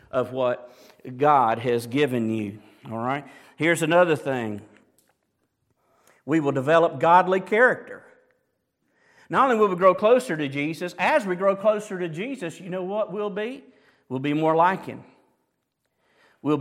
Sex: male